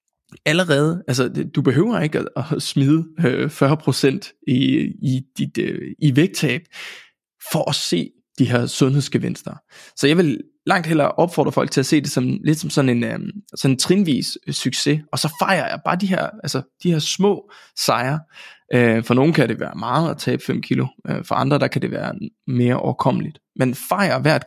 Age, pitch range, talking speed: 20-39, 115-155 Hz, 190 wpm